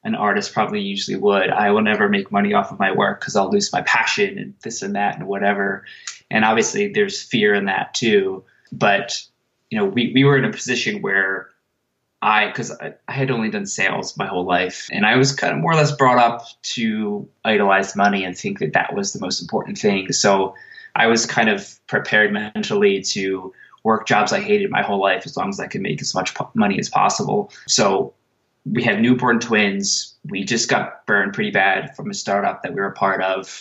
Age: 20-39